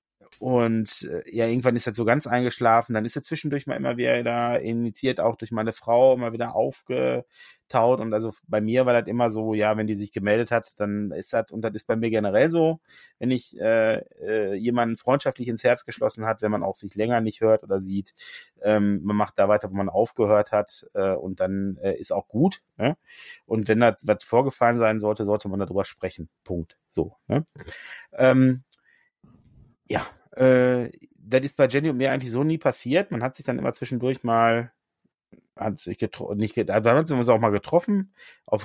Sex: male